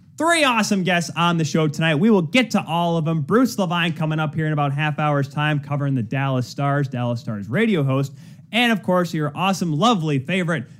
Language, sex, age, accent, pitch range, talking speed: English, male, 20-39, American, 130-175 Hz, 215 wpm